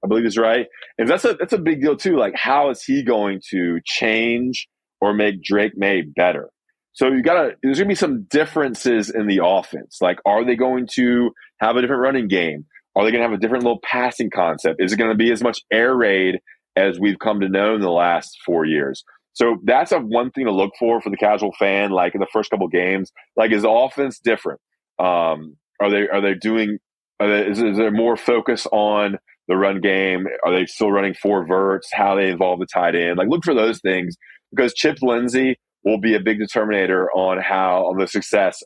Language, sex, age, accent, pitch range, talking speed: English, male, 20-39, American, 100-120 Hz, 230 wpm